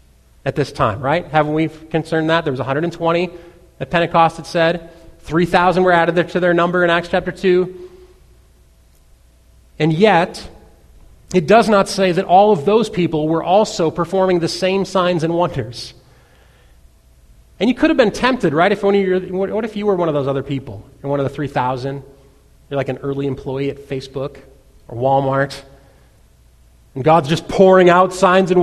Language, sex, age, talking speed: English, male, 30-49, 175 wpm